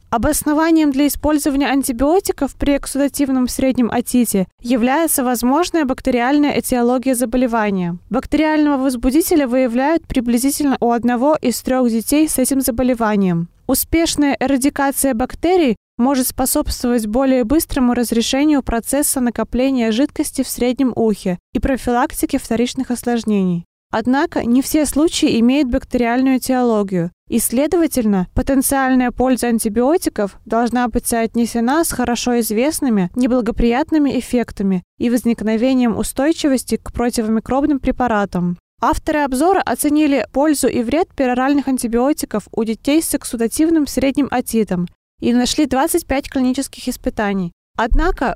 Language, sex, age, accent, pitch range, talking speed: Russian, female, 20-39, native, 240-280 Hz, 110 wpm